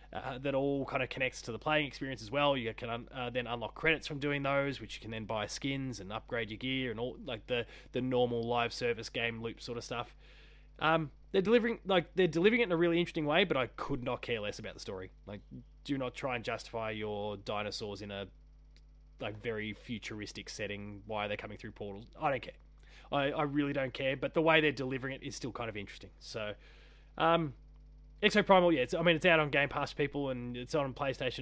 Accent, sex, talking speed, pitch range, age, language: Australian, male, 235 wpm, 120-150 Hz, 20-39, English